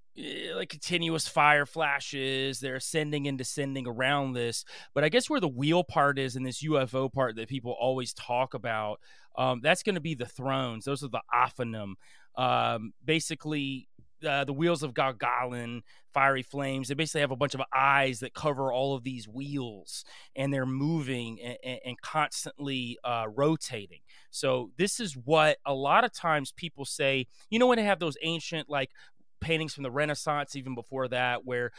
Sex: male